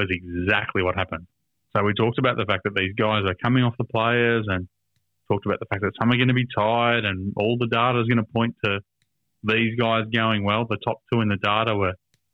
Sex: male